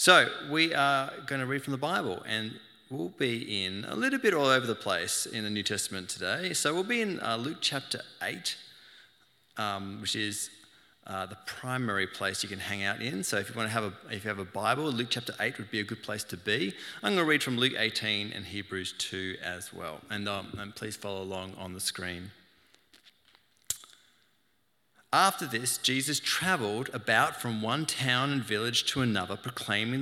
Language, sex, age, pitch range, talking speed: English, male, 30-49, 100-125 Hz, 200 wpm